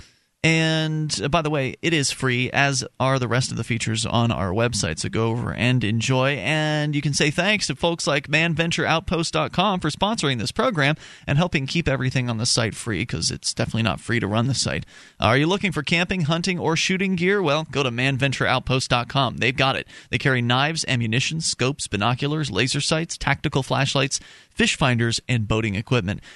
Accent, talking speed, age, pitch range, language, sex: American, 190 wpm, 30-49, 115-150 Hz, English, male